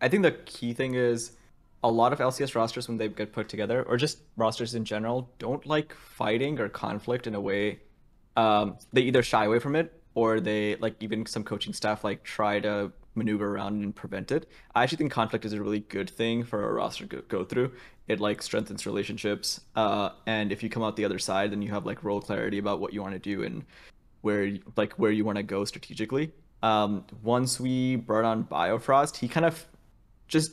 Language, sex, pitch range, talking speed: English, male, 105-120 Hz, 215 wpm